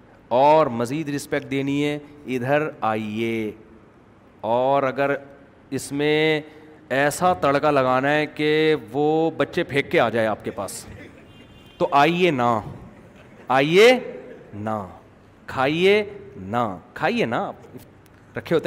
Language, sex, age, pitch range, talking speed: Urdu, male, 40-59, 135-175 Hz, 115 wpm